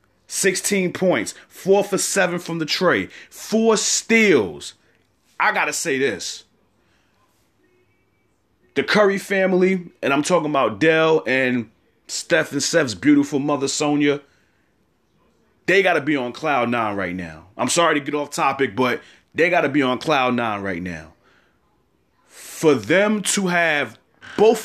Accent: American